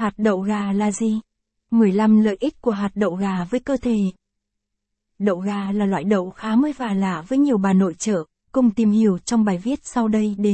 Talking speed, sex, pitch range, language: 215 wpm, female, 195-235 Hz, Vietnamese